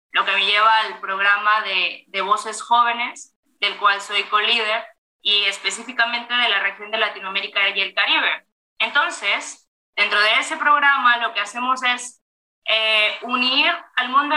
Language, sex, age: Spanish, female, 20-39